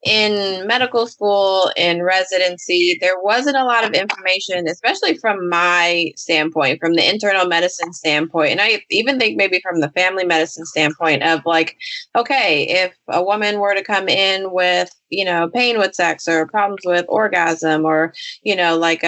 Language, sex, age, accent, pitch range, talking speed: English, female, 20-39, American, 165-200 Hz, 170 wpm